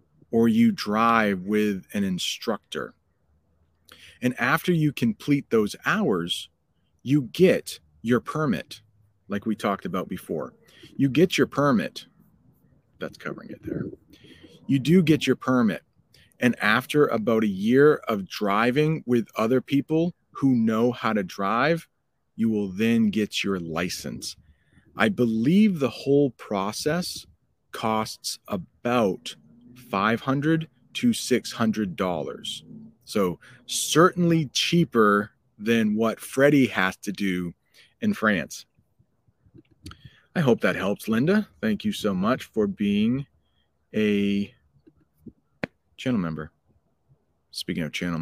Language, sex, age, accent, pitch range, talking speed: English, male, 40-59, American, 100-145 Hz, 115 wpm